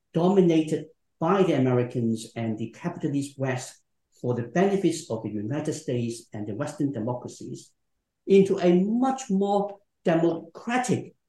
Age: 60-79